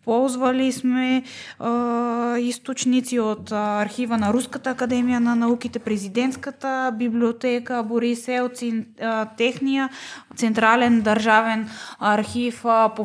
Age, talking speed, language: 20-39, 85 wpm, Bulgarian